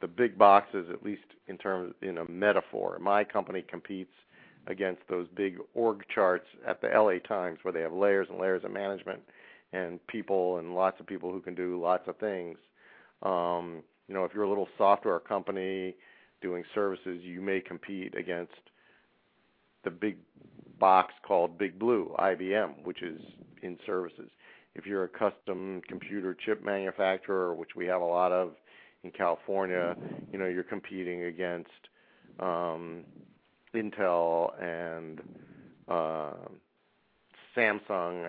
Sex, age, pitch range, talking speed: male, 50-69, 85-100 Hz, 145 wpm